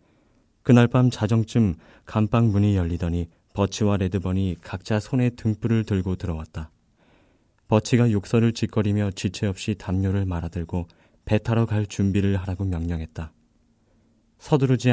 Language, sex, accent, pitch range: Korean, male, native, 90-115 Hz